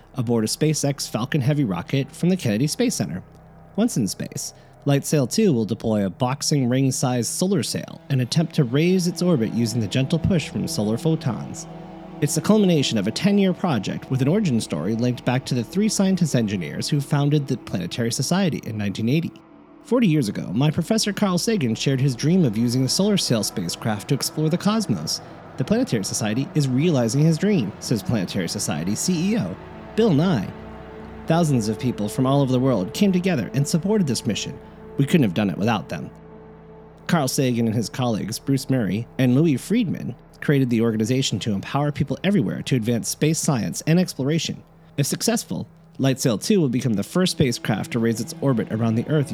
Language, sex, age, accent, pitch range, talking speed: English, male, 30-49, American, 120-175 Hz, 185 wpm